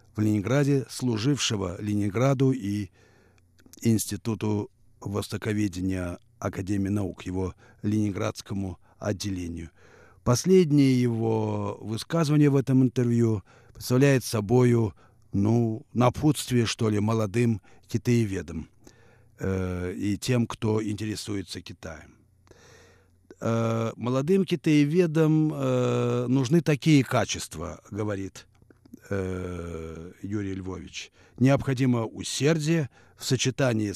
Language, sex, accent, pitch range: Russian, male, native, 100-140 Hz